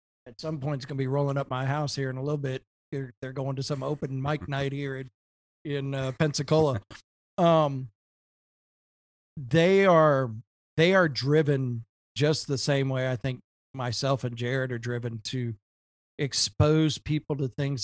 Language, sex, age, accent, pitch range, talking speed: English, male, 40-59, American, 120-150 Hz, 170 wpm